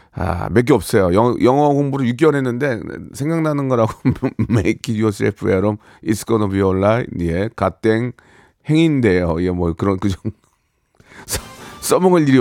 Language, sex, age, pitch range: Korean, male, 40-59, 115-175 Hz